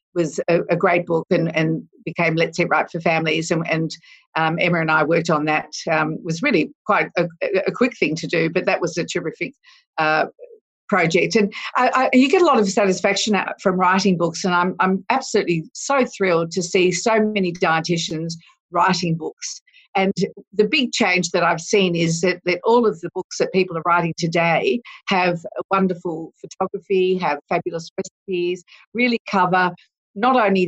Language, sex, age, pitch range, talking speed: English, female, 50-69, 170-205 Hz, 185 wpm